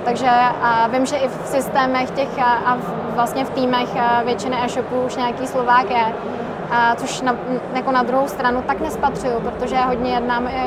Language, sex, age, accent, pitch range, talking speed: Czech, female, 20-39, native, 235-255 Hz, 165 wpm